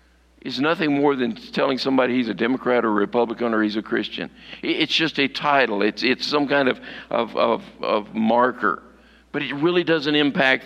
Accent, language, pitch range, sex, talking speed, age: American, English, 120-170 Hz, male, 175 wpm, 50-69